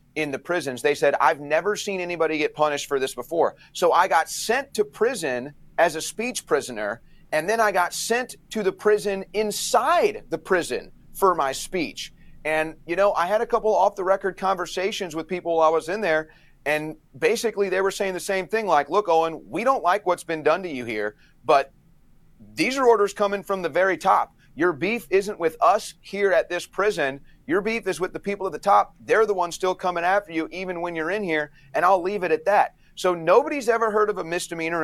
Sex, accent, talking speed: male, American, 220 wpm